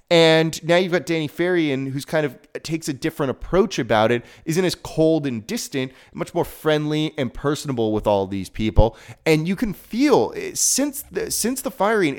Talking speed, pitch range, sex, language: 185 wpm, 125-190 Hz, male, English